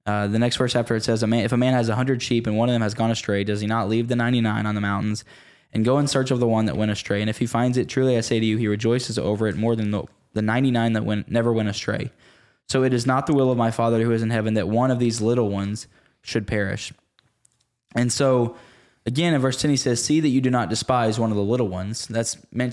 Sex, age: male, 10-29